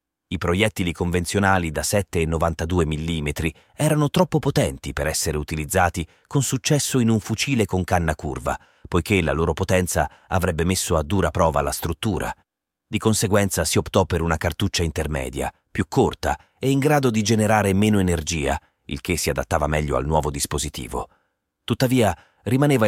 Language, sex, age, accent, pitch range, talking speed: Italian, male, 30-49, native, 80-115 Hz, 150 wpm